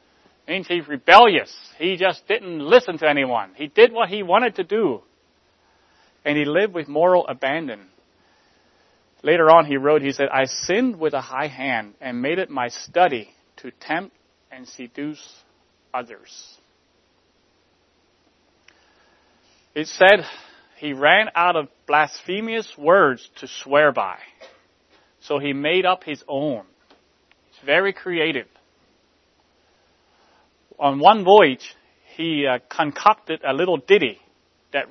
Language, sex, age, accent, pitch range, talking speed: English, male, 30-49, American, 130-180 Hz, 125 wpm